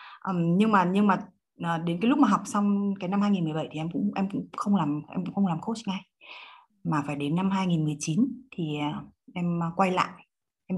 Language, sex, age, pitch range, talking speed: Vietnamese, female, 20-39, 170-230 Hz, 200 wpm